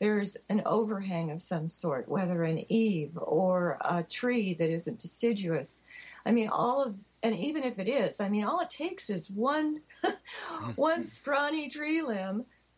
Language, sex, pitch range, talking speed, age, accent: English, female, 185-245 Hz, 165 wpm, 50-69, American